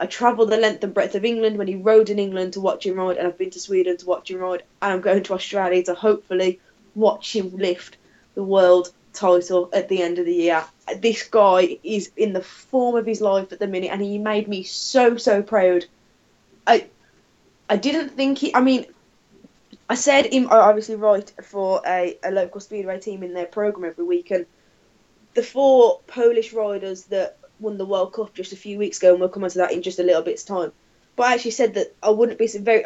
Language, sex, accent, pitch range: English, female, British, 185-230 Hz